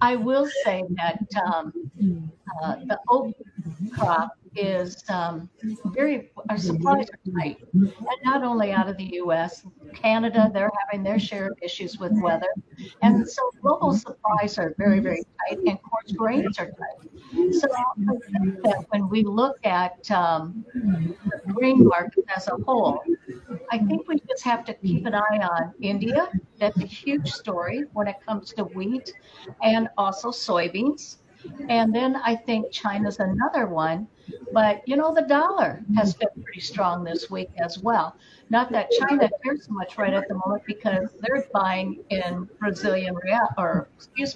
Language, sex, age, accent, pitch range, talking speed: English, female, 60-79, American, 195-240 Hz, 165 wpm